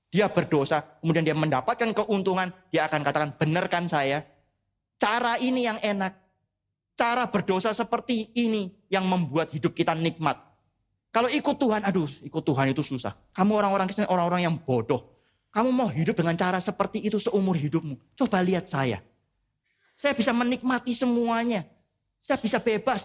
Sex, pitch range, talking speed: male, 125-190 Hz, 150 wpm